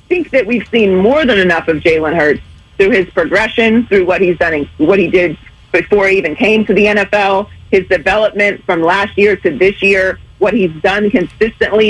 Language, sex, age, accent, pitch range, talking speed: English, female, 40-59, American, 180-225 Hz, 195 wpm